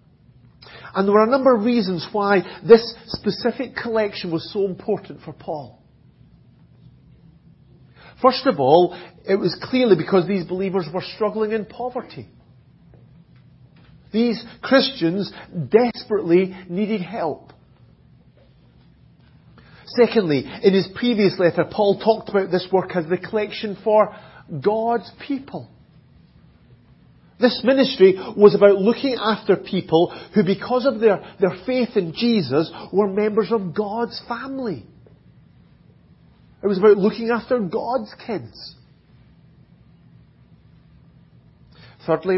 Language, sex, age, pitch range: English, male, 40-59, 180-230 Hz